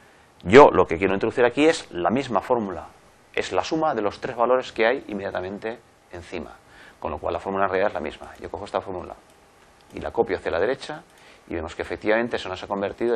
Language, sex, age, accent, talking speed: Spanish, male, 30-49, Spanish, 220 wpm